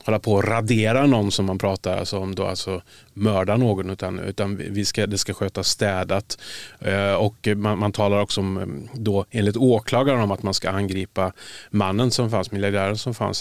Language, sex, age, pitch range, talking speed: Swedish, male, 30-49, 95-110 Hz, 190 wpm